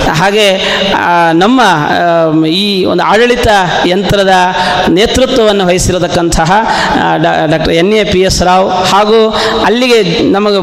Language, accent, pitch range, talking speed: Kannada, native, 185-240 Hz, 100 wpm